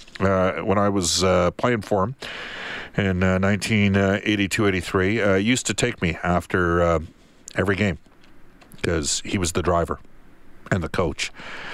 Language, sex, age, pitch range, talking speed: English, male, 50-69, 90-115 Hz, 145 wpm